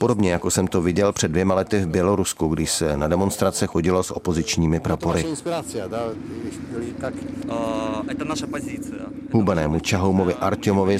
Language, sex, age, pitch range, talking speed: Czech, male, 30-49, 90-135 Hz, 115 wpm